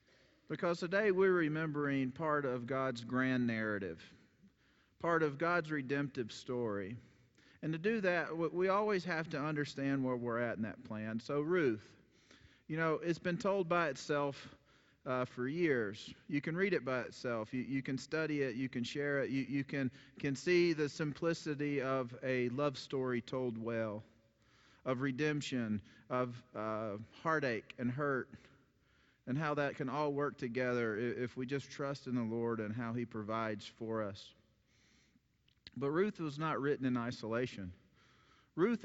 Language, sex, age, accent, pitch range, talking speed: English, male, 40-59, American, 120-155 Hz, 160 wpm